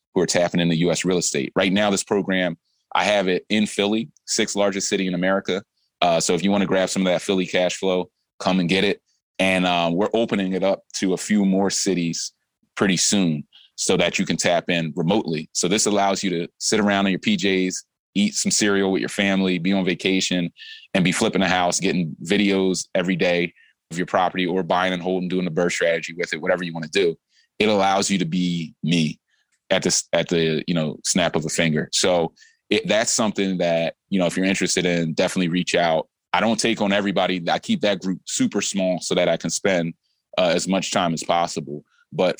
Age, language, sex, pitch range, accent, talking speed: 30-49, English, male, 85-100 Hz, American, 215 wpm